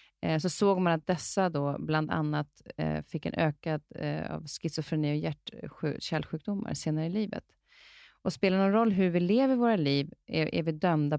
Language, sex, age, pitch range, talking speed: Swedish, female, 30-49, 150-195 Hz, 160 wpm